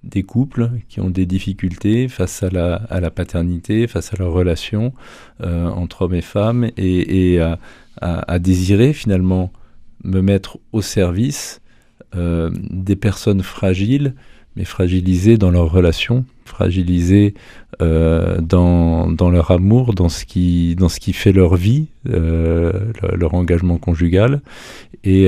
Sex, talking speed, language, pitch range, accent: male, 145 wpm, French, 90-110 Hz, French